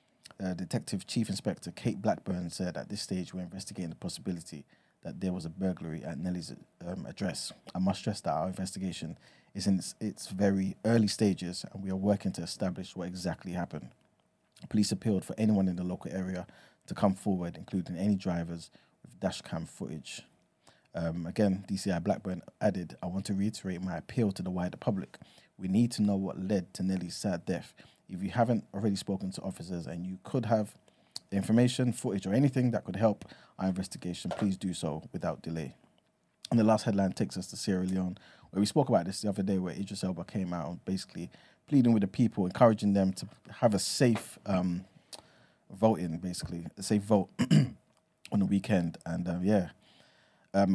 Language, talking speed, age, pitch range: English, 185 wpm, 20-39, 90-105 Hz